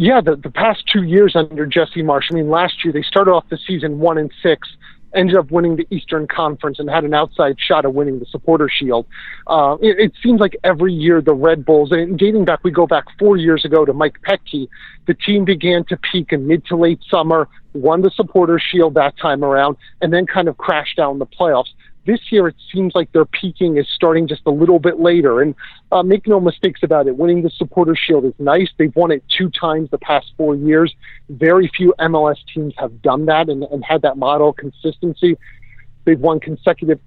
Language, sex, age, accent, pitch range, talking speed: English, male, 40-59, American, 145-175 Hz, 220 wpm